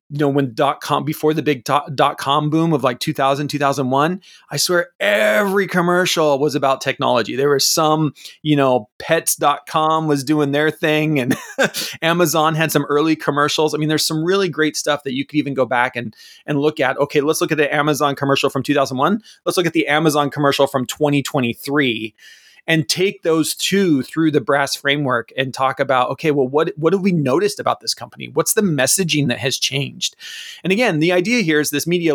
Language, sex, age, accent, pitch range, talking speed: English, male, 30-49, American, 135-165 Hz, 200 wpm